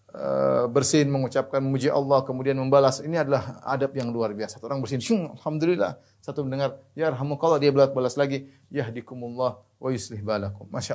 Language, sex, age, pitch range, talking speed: Indonesian, male, 30-49, 125-155 Hz, 160 wpm